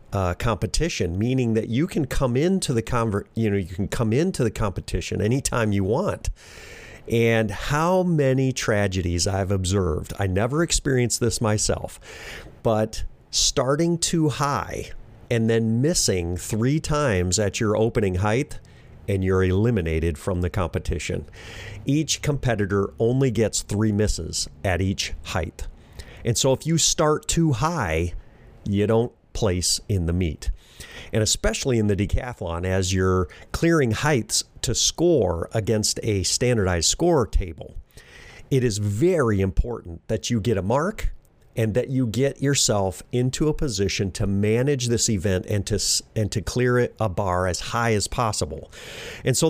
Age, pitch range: 50-69, 95-125 Hz